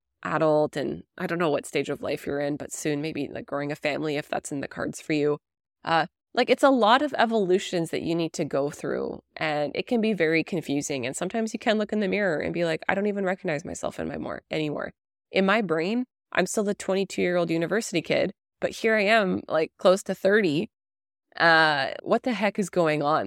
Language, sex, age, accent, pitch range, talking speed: English, female, 20-39, American, 155-205 Hz, 230 wpm